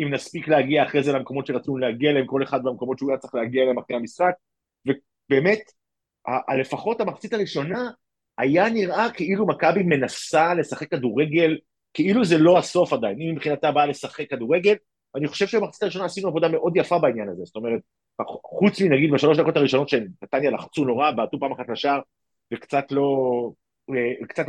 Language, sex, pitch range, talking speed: Hebrew, male, 130-170 Hz, 165 wpm